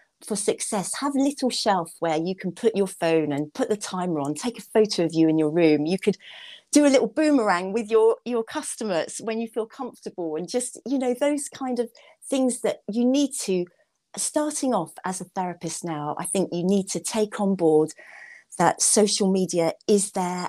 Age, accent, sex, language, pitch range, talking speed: 40-59, British, female, English, 180-260 Hz, 205 wpm